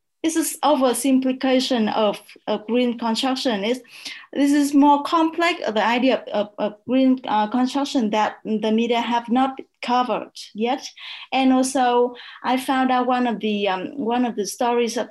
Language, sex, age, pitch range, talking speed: English, female, 20-39, 235-295 Hz, 165 wpm